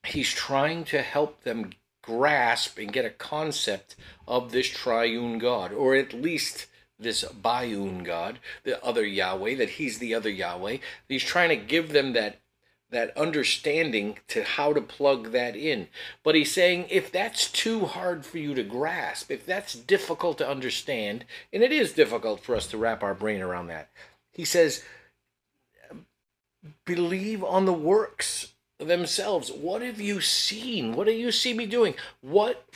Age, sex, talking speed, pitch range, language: 50-69, male, 165 wpm, 125-200 Hz, English